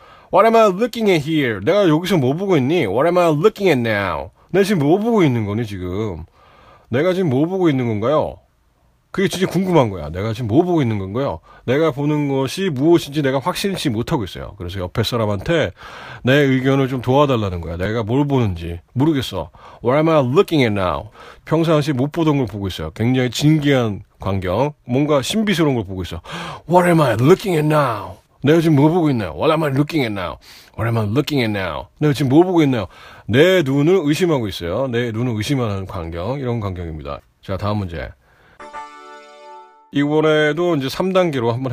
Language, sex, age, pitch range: Korean, male, 30-49, 105-160 Hz